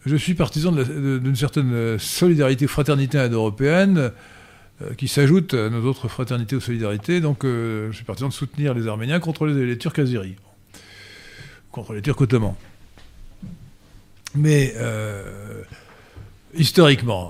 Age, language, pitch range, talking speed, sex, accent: 50-69, French, 110-145 Hz, 140 wpm, male, French